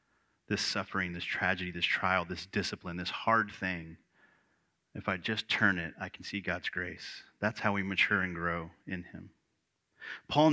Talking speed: 170 wpm